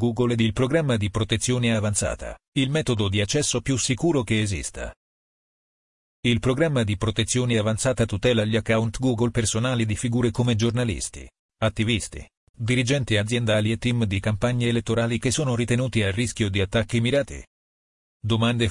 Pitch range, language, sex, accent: 105-120 Hz, Italian, male, native